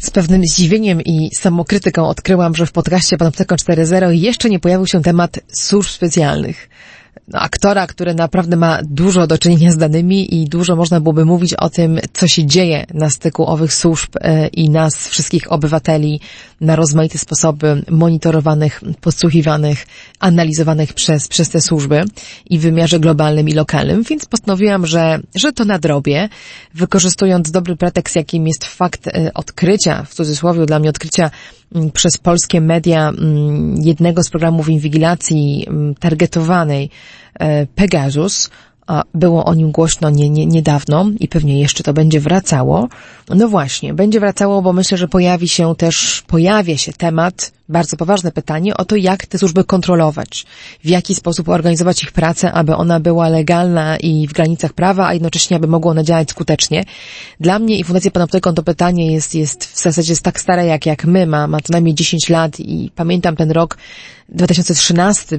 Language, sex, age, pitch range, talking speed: Polish, female, 30-49, 160-180 Hz, 160 wpm